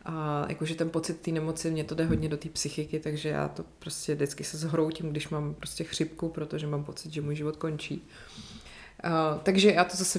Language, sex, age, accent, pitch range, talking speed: Czech, female, 30-49, native, 155-180 Hz, 210 wpm